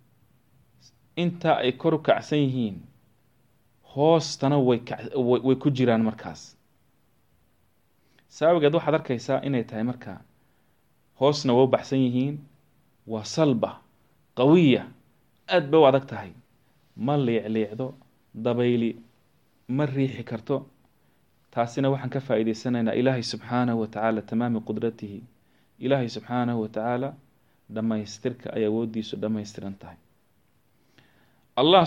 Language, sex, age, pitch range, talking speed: English, male, 30-49, 115-135 Hz, 65 wpm